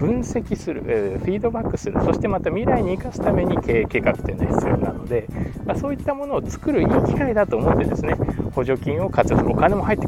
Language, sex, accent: Japanese, male, native